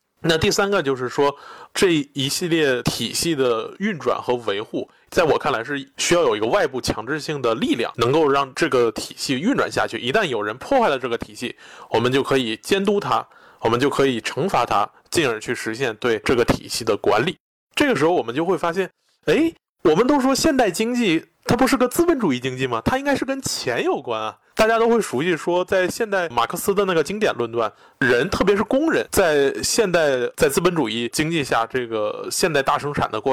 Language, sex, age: Chinese, male, 20-39